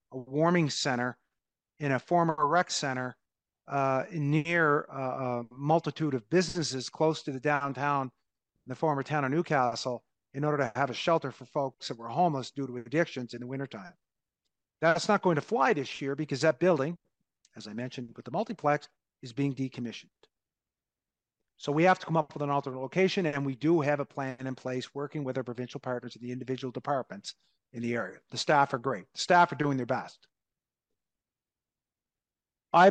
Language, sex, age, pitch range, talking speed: English, male, 40-59, 130-170 Hz, 185 wpm